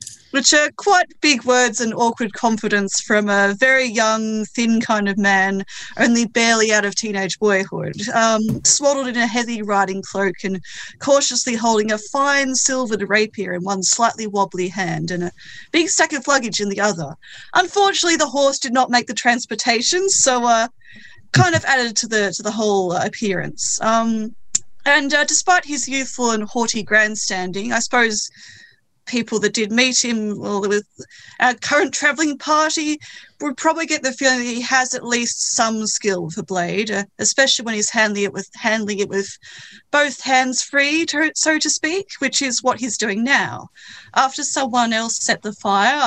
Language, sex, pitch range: English, female, 205-270 Hz